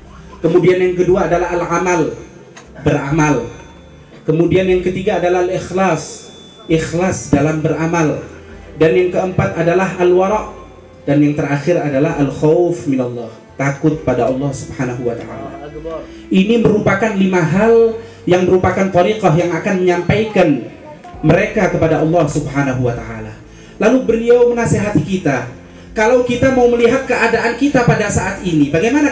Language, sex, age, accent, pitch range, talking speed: Indonesian, male, 30-49, native, 155-235 Hz, 125 wpm